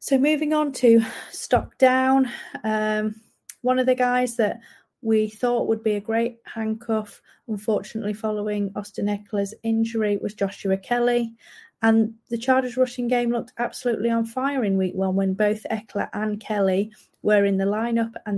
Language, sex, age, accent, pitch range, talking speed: English, female, 30-49, British, 200-235 Hz, 160 wpm